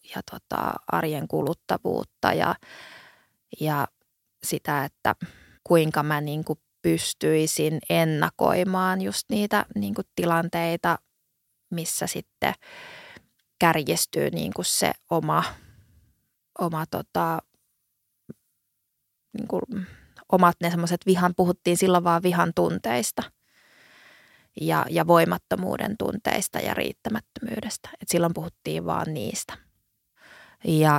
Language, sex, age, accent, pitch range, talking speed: Finnish, female, 20-39, native, 150-185 Hz, 90 wpm